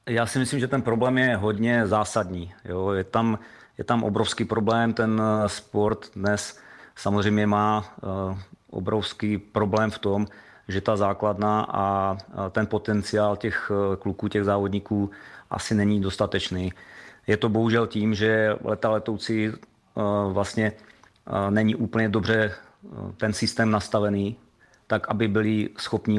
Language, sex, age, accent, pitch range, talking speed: Czech, male, 30-49, native, 100-110 Hz, 125 wpm